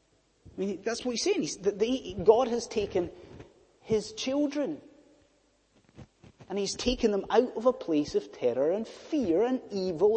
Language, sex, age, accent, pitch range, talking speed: English, male, 30-49, British, 180-300 Hz, 165 wpm